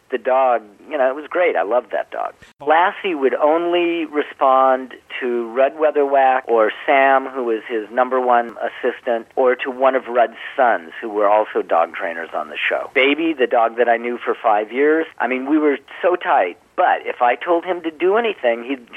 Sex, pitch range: male, 120-160 Hz